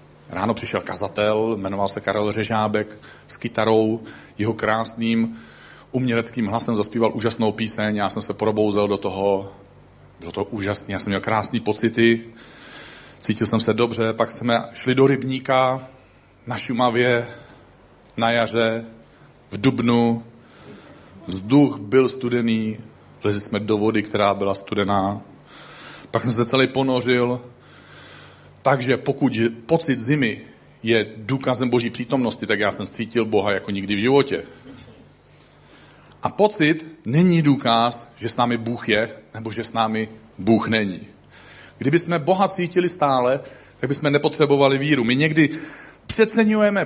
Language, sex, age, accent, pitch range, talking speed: Czech, male, 40-59, native, 110-140 Hz, 135 wpm